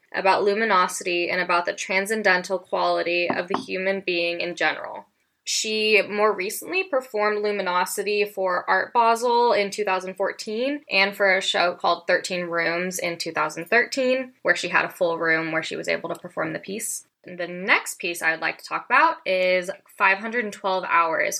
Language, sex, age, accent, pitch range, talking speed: English, female, 10-29, American, 175-205 Hz, 165 wpm